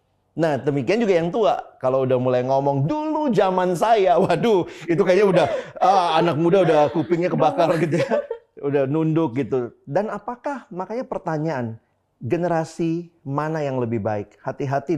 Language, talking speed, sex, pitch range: Indonesian, 145 wpm, male, 120-165 Hz